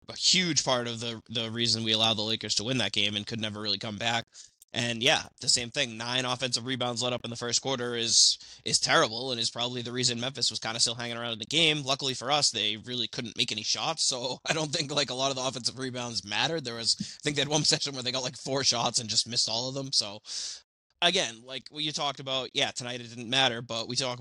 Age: 20-39